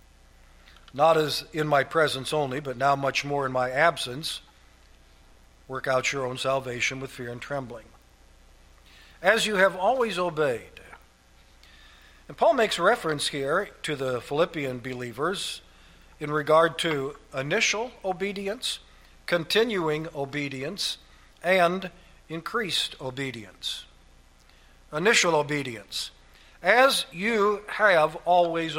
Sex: male